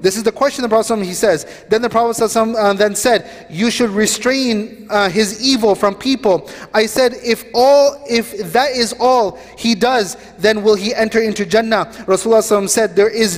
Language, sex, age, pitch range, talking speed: English, male, 30-49, 170-225 Hz, 190 wpm